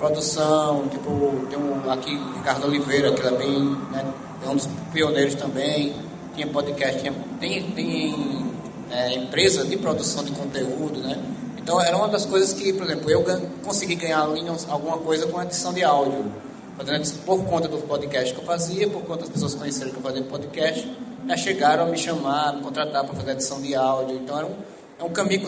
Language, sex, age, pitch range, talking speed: Portuguese, male, 20-39, 135-175 Hz, 200 wpm